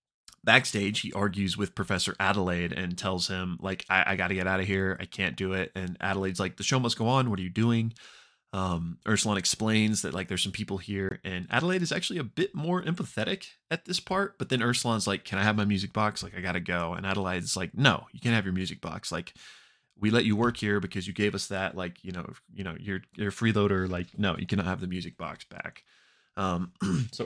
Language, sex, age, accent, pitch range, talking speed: English, male, 20-39, American, 95-110 Hz, 240 wpm